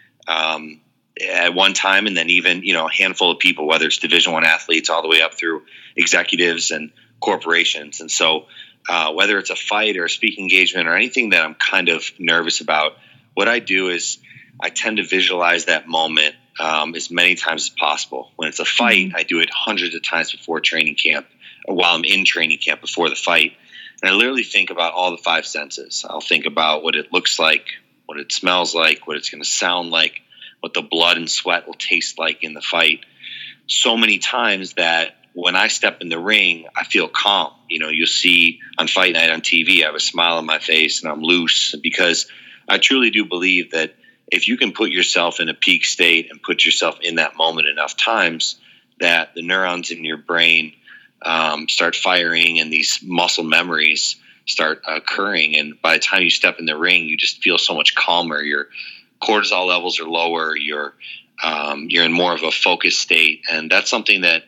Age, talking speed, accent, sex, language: 30-49, 210 wpm, American, male, English